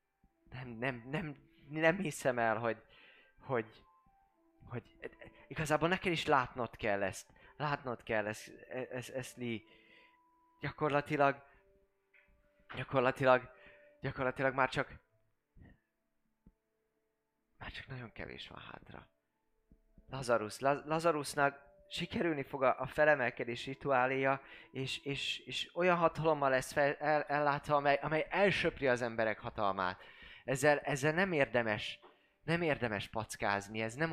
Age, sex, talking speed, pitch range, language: 20-39, male, 110 wpm, 110-145 Hz, Hungarian